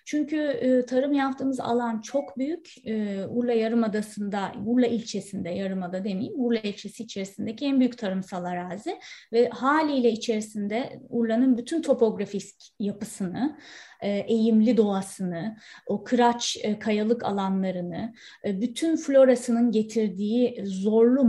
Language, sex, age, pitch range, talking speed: Turkish, female, 30-49, 205-255 Hz, 100 wpm